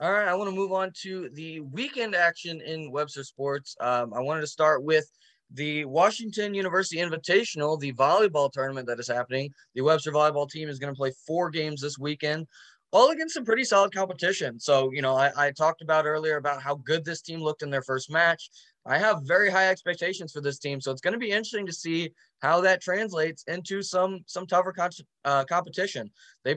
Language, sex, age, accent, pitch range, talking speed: English, male, 20-39, American, 135-175 Hz, 205 wpm